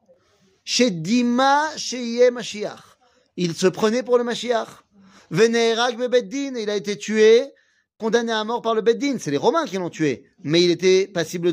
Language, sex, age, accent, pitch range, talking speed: French, male, 30-49, French, 185-235 Hz, 160 wpm